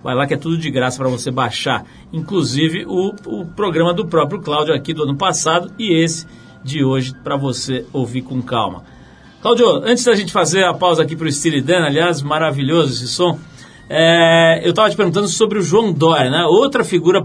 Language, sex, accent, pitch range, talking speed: Portuguese, male, Brazilian, 135-170 Hz, 200 wpm